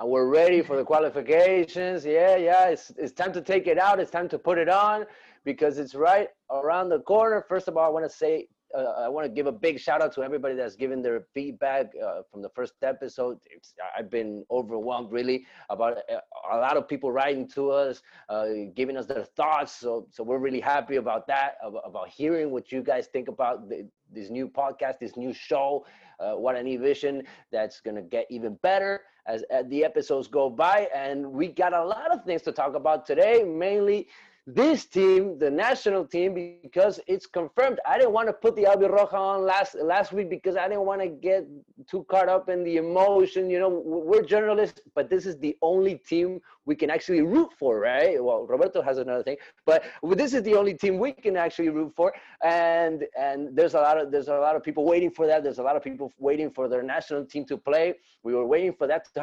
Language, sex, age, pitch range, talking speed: English, male, 30-49, 140-195 Hz, 220 wpm